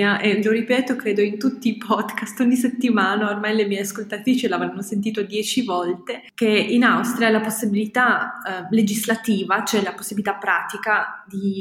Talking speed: 155 wpm